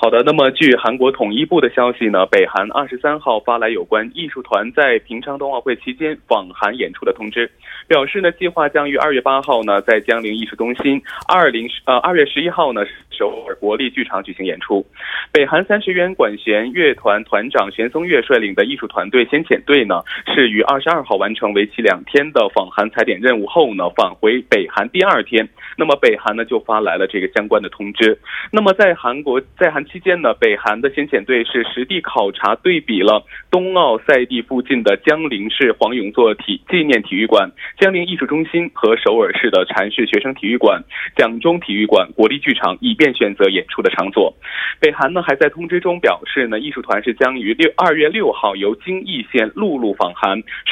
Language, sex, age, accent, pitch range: Korean, male, 20-39, Chinese, 125-205 Hz